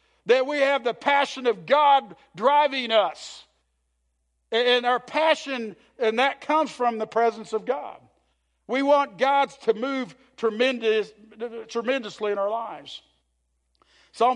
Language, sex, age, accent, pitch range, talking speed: English, male, 50-69, American, 210-260 Hz, 130 wpm